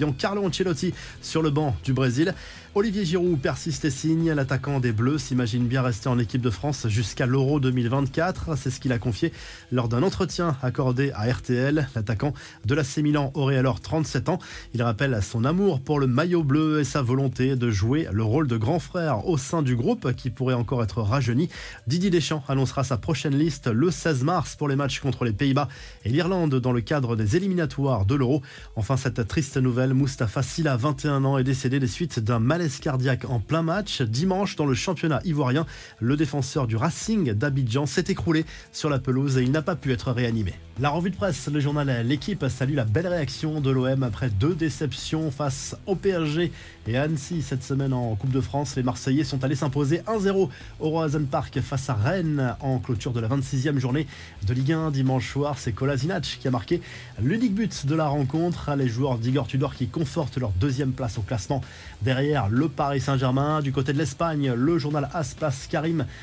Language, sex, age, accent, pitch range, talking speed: French, male, 20-39, French, 125-155 Hz, 200 wpm